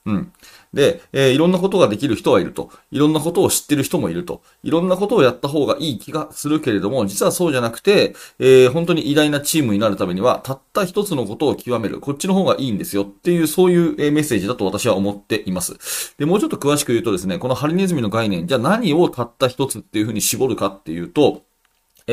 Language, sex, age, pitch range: Japanese, male, 30-49, 110-175 Hz